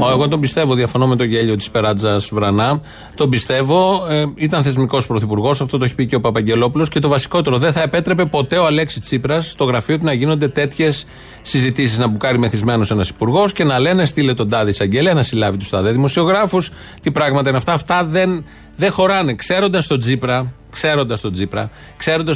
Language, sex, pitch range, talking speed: Greek, male, 120-160 Hz, 180 wpm